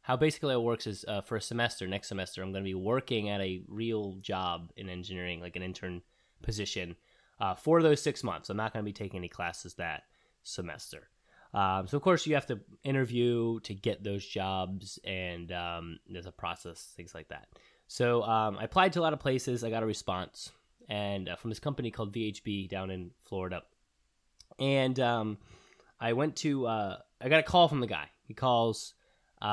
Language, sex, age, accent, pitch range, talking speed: English, male, 20-39, American, 95-120 Hz, 200 wpm